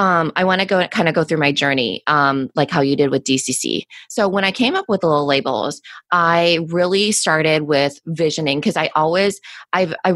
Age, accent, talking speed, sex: 20-39, American, 230 wpm, female